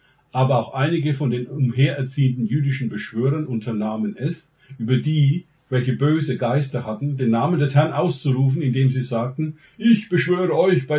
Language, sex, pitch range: German, male, 120-150 Hz